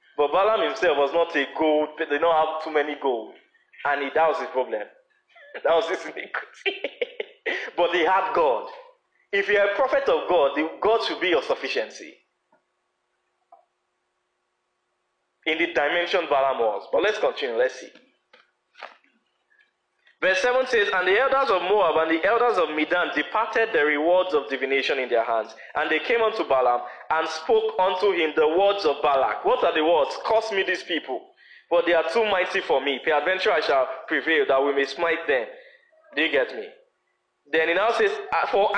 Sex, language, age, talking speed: male, English, 20-39, 180 wpm